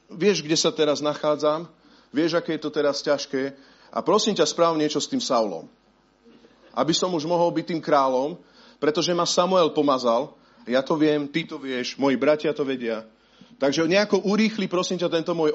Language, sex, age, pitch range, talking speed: Slovak, male, 40-59, 155-210 Hz, 185 wpm